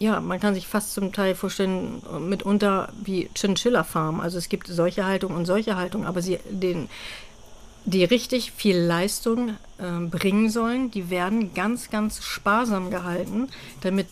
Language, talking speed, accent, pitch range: German, 155 wpm, German, 180-210 Hz